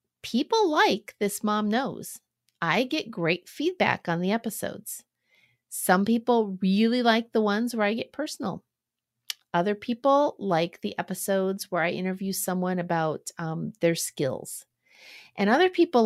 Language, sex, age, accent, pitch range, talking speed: English, female, 40-59, American, 170-225 Hz, 140 wpm